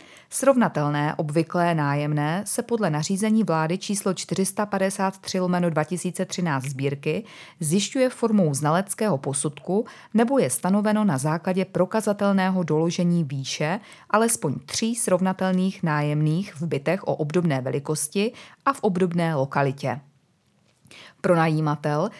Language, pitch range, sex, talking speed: Czech, 150-205 Hz, female, 105 wpm